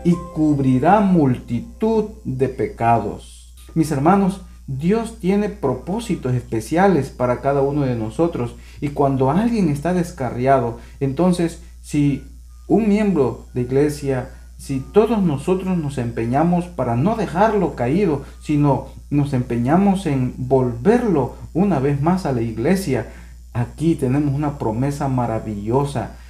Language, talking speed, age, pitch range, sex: Spanish, 120 wpm, 50-69, 120-170 Hz, male